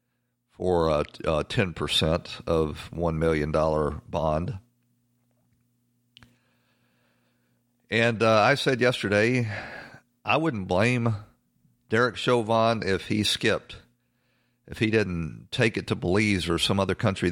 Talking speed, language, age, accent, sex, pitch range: 110 wpm, English, 50-69, American, male, 85-120 Hz